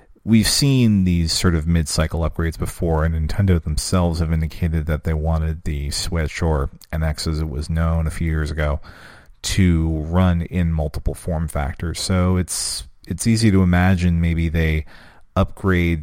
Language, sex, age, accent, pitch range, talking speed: English, male, 40-59, American, 75-90 Hz, 160 wpm